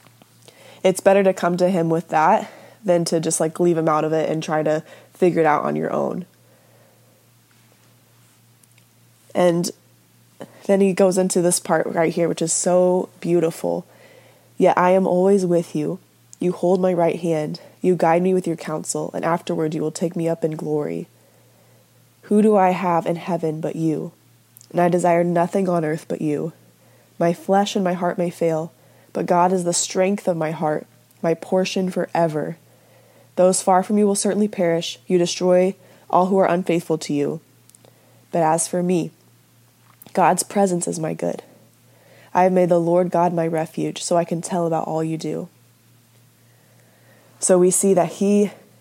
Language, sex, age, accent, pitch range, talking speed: English, female, 20-39, American, 160-180 Hz, 180 wpm